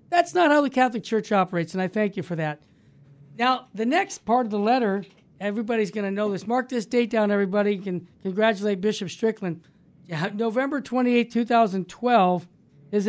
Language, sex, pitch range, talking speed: English, male, 190-240 Hz, 180 wpm